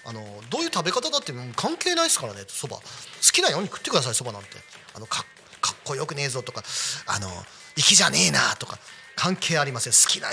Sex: male